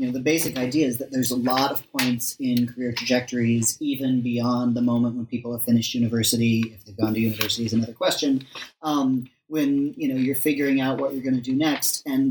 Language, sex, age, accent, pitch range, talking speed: English, male, 40-59, American, 120-135 Hz, 215 wpm